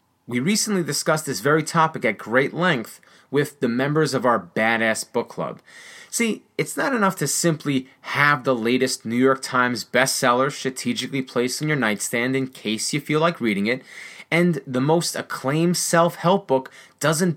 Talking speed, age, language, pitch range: 170 wpm, 30-49, English, 130-175 Hz